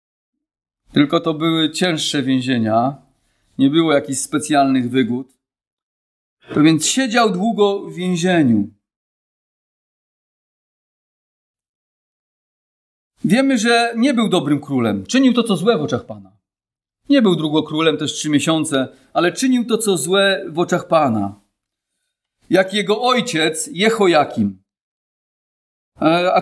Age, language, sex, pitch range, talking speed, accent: 40-59, Polish, male, 150-225 Hz, 115 wpm, native